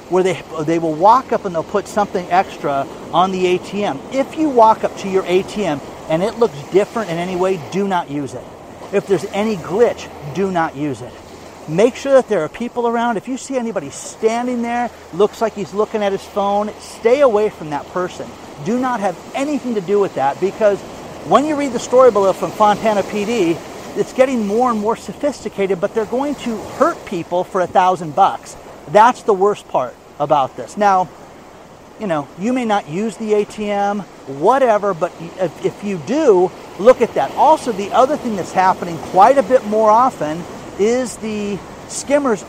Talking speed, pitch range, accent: 190 wpm, 175-230 Hz, American